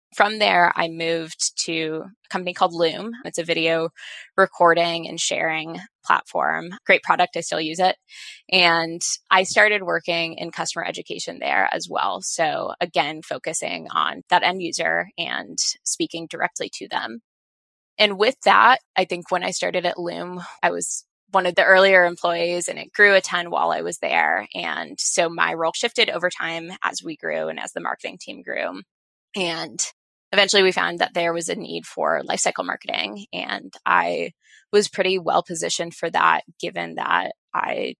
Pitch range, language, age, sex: 165-195 Hz, English, 20-39, female